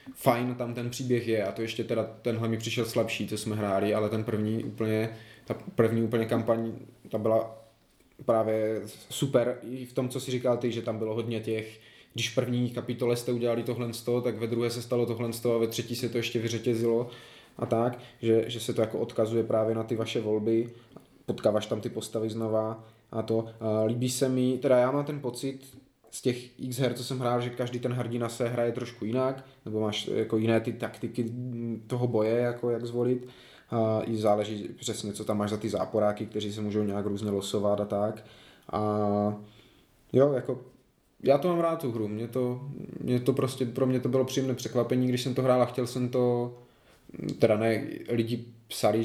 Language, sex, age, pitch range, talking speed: Czech, male, 20-39, 110-125 Hz, 205 wpm